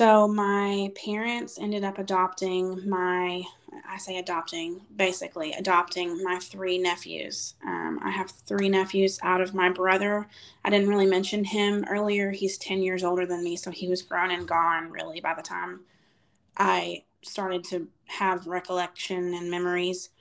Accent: American